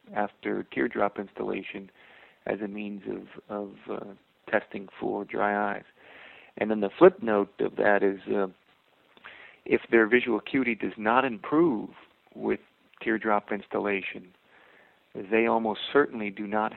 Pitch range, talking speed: 100-110 Hz, 130 wpm